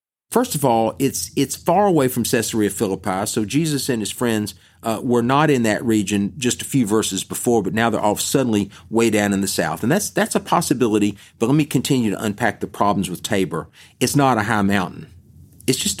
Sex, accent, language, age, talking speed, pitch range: male, American, English, 40-59, 215 wpm, 105-145 Hz